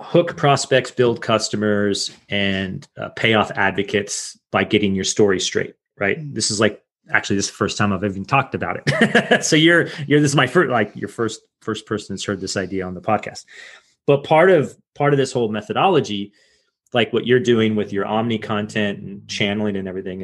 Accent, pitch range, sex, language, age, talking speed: American, 105-130 Hz, male, English, 30-49, 200 wpm